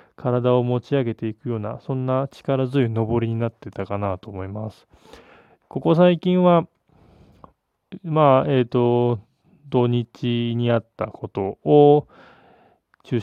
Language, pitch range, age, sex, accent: Japanese, 115-140 Hz, 20-39, male, native